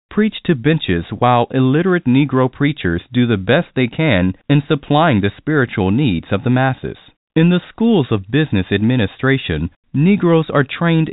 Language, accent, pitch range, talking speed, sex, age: English, American, 105-155 Hz, 155 wpm, male, 40-59